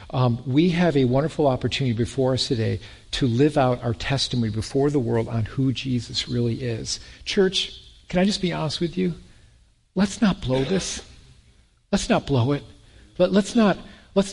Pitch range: 130-175 Hz